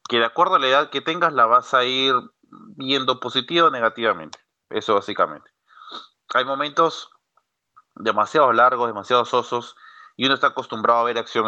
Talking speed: 160 wpm